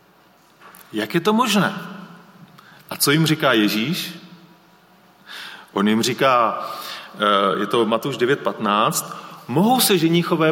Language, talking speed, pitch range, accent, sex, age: Czech, 110 wpm, 155-190 Hz, native, male, 40-59